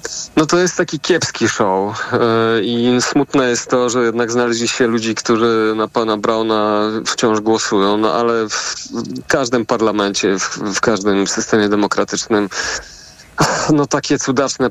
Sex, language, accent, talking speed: male, Polish, native, 135 wpm